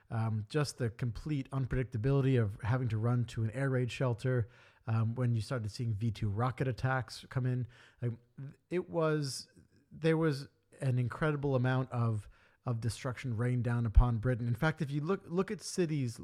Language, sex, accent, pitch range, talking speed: English, male, American, 120-140 Hz, 175 wpm